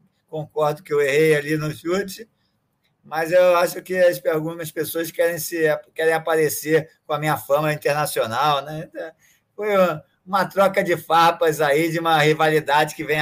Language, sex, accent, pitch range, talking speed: Portuguese, male, Brazilian, 145-180 Hz, 150 wpm